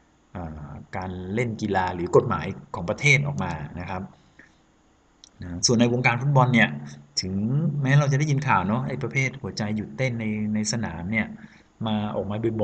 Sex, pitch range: male, 95-125 Hz